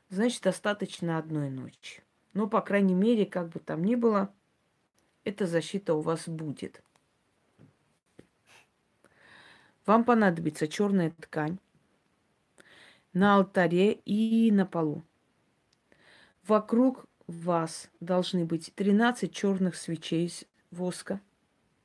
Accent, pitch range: native, 170-210 Hz